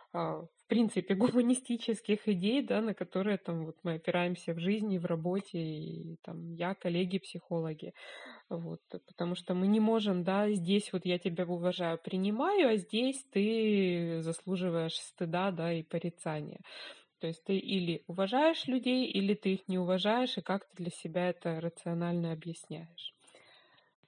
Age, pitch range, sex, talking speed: 20-39, 180-215 Hz, female, 145 wpm